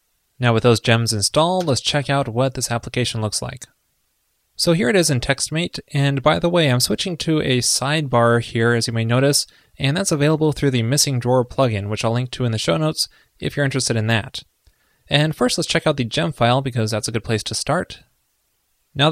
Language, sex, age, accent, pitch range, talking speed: English, male, 20-39, American, 115-140 Hz, 220 wpm